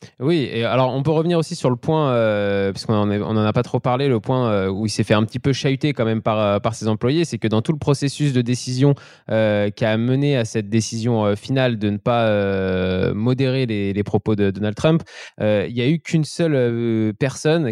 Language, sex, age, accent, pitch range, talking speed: French, male, 20-39, French, 110-140 Hz, 240 wpm